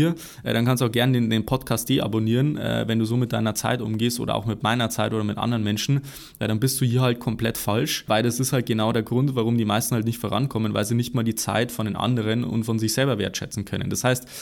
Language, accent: German, German